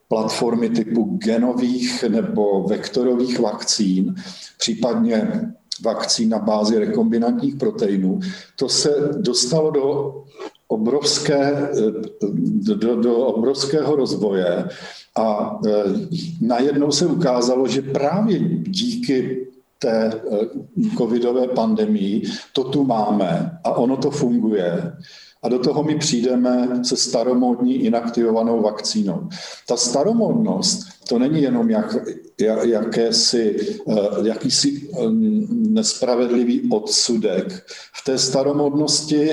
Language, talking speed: Czech, 90 wpm